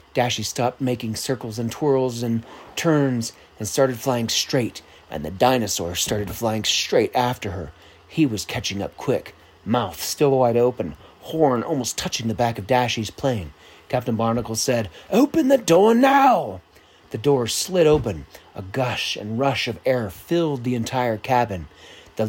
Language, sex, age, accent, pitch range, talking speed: English, male, 30-49, American, 110-135 Hz, 160 wpm